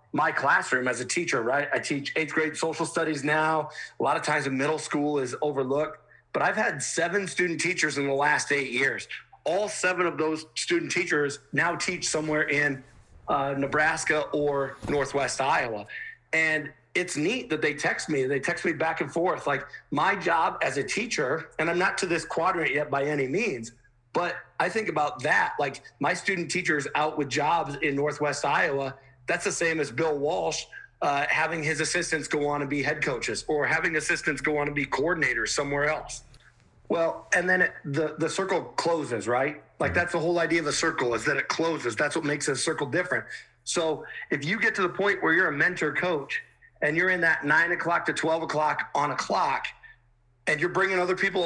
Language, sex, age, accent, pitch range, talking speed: English, male, 40-59, American, 145-165 Hz, 205 wpm